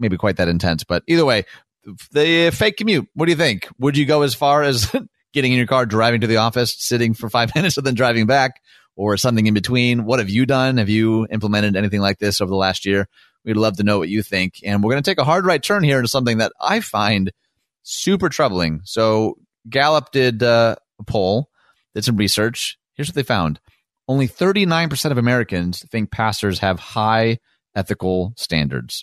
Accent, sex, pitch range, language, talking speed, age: American, male, 95-125 Hz, English, 205 wpm, 30-49